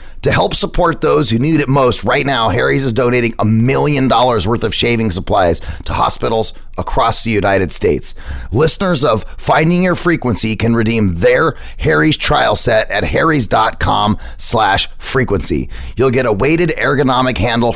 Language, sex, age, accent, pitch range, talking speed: English, male, 30-49, American, 90-115 Hz, 160 wpm